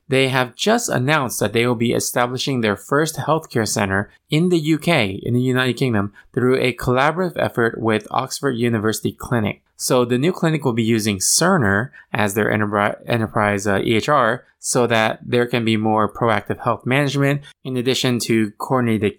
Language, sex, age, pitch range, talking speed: English, male, 20-39, 110-140 Hz, 170 wpm